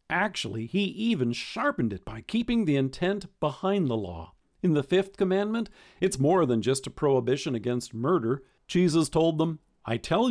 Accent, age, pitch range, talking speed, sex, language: American, 50-69, 125-190 Hz, 170 wpm, male, English